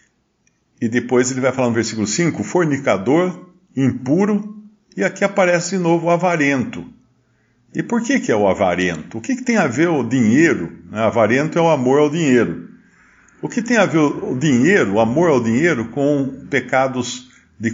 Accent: Brazilian